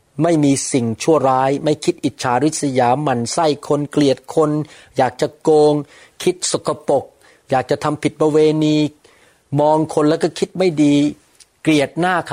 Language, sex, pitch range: Thai, male, 125-165 Hz